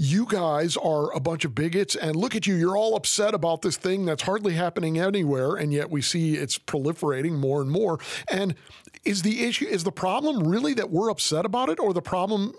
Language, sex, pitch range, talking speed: English, male, 140-180 Hz, 215 wpm